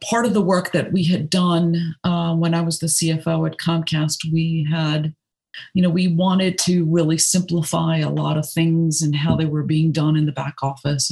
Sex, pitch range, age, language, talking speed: female, 160-190 Hz, 50-69, English, 210 wpm